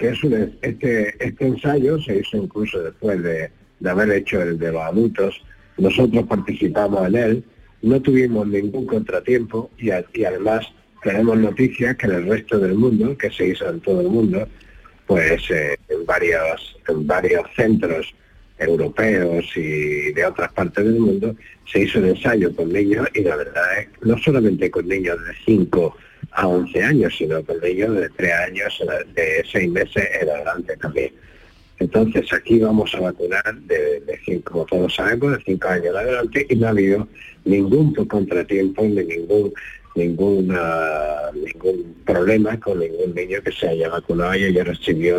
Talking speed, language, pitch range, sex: 165 wpm, Spanish, 90-130 Hz, male